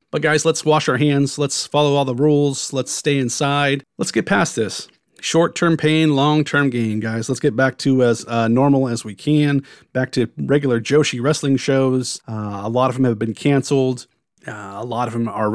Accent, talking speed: American, 205 wpm